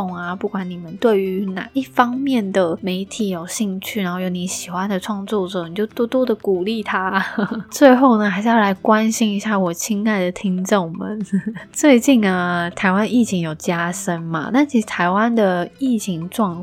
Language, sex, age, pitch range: Chinese, female, 20-39, 175-210 Hz